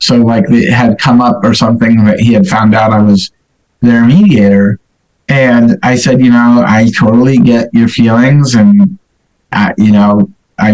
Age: 30-49